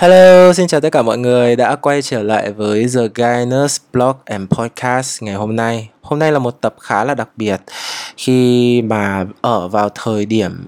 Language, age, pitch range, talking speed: Vietnamese, 20-39, 105-130 Hz, 195 wpm